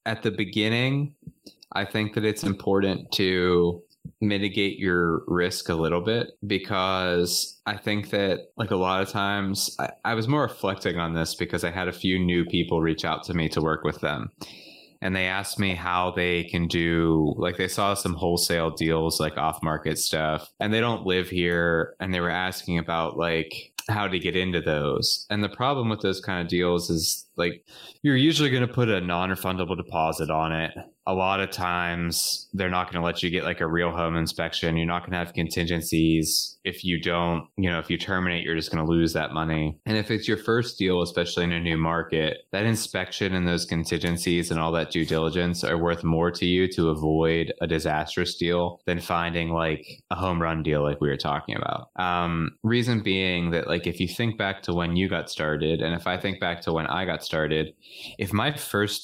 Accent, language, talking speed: American, English, 210 wpm